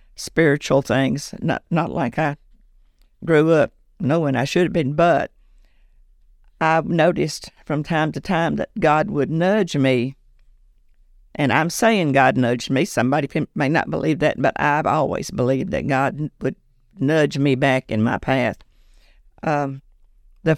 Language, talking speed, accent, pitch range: English, 150 wpm, American, 125-155 Hz